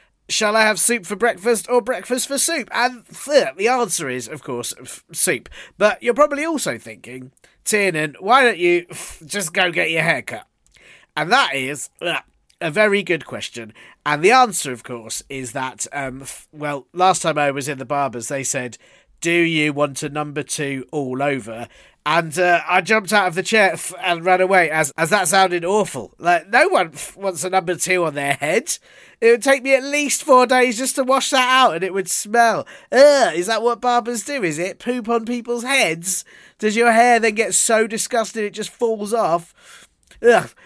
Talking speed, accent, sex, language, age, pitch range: 195 wpm, British, male, English, 40-59, 150-235 Hz